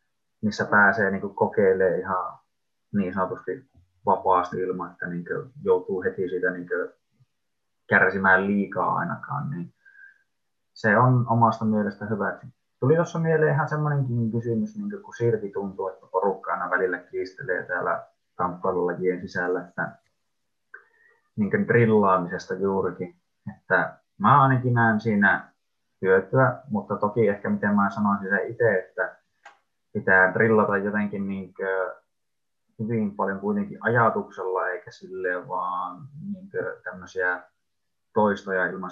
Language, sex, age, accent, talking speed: Finnish, male, 20-39, native, 110 wpm